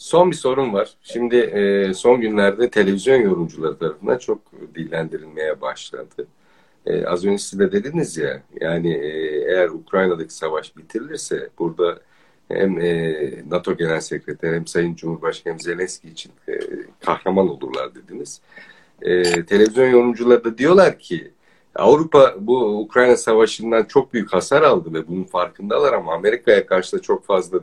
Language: Turkish